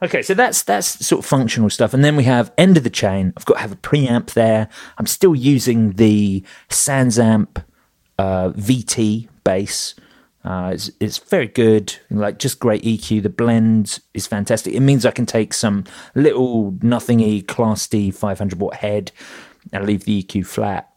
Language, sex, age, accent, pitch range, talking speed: English, male, 30-49, British, 100-125 Hz, 175 wpm